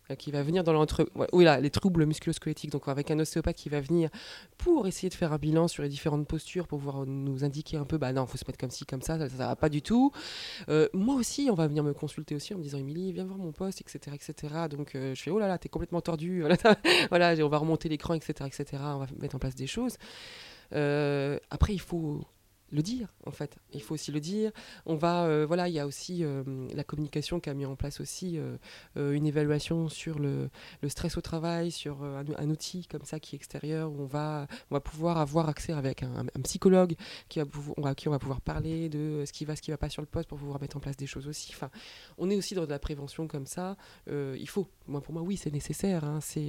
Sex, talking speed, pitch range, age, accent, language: female, 265 wpm, 145-170 Hz, 20-39, French, French